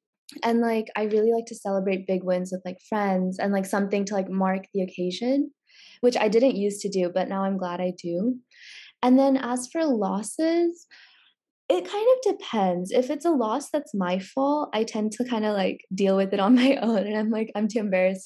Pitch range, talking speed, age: 190-240 Hz, 215 wpm, 10-29